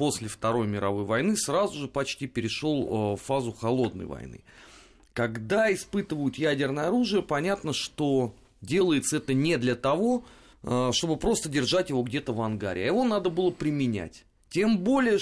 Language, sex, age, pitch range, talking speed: Russian, male, 30-49, 120-175 Hz, 140 wpm